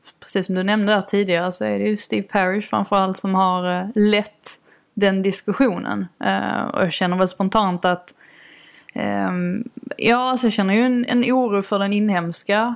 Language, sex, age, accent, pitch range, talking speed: Swedish, female, 20-39, native, 185-230 Hz, 165 wpm